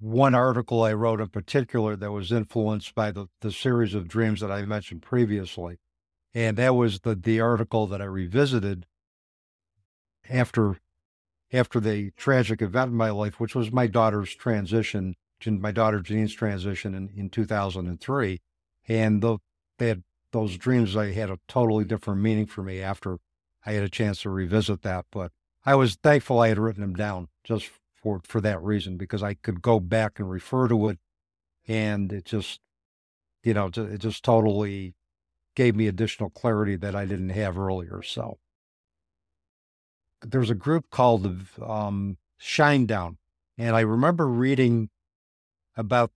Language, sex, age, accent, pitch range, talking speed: English, male, 60-79, American, 95-115 Hz, 160 wpm